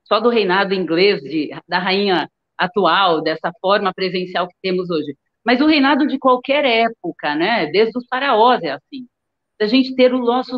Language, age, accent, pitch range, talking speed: Portuguese, 40-59, Brazilian, 215-285 Hz, 175 wpm